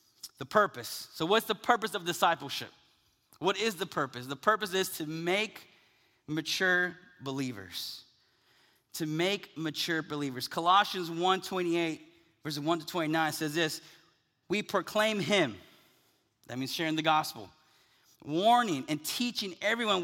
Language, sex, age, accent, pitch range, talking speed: English, male, 30-49, American, 160-205 Hz, 130 wpm